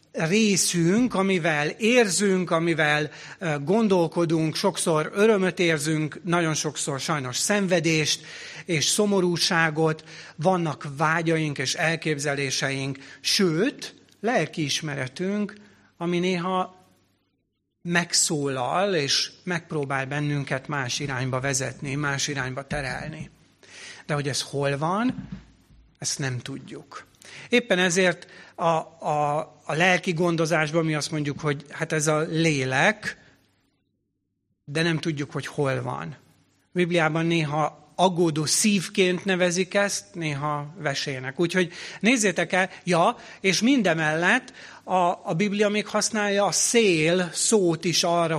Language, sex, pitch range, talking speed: Hungarian, male, 150-185 Hz, 105 wpm